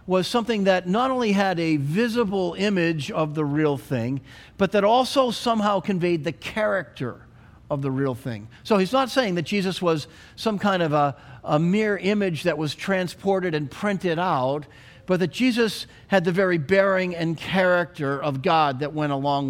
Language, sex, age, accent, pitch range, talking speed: English, male, 50-69, American, 150-195 Hz, 180 wpm